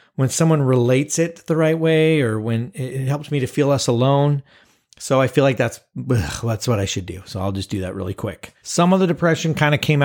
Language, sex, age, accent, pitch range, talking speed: English, male, 30-49, American, 110-135 Hz, 240 wpm